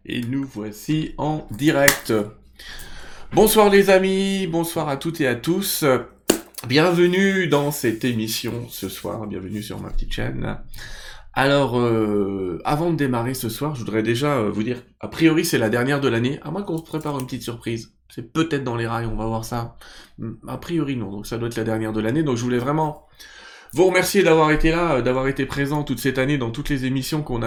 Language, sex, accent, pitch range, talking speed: French, male, French, 110-150 Hz, 200 wpm